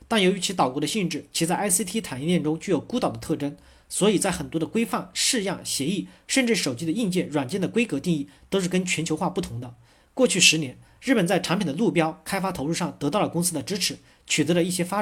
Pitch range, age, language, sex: 145-190 Hz, 40-59, Chinese, male